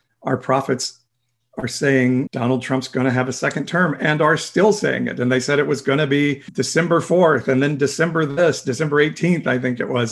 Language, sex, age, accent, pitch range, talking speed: English, male, 40-59, American, 125-150 Hz, 220 wpm